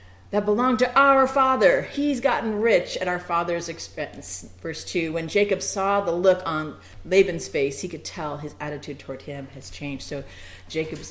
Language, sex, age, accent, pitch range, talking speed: English, female, 40-59, American, 145-200 Hz, 180 wpm